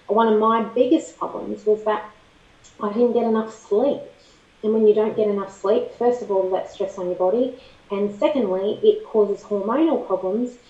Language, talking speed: English, 185 wpm